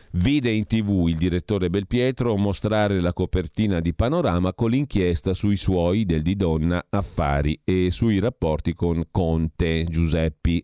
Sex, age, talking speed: male, 40-59, 140 wpm